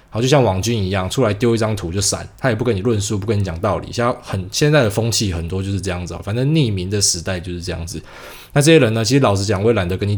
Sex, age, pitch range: male, 20-39, 95-120 Hz